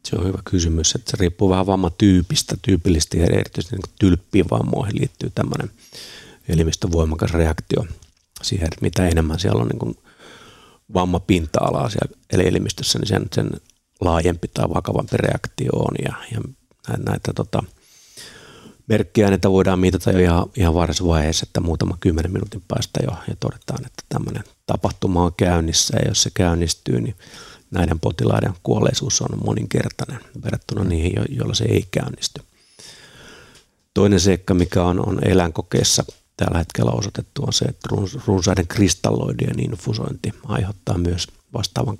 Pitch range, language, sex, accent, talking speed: 85-110 Hz, Finnish, male, native, 140 wpm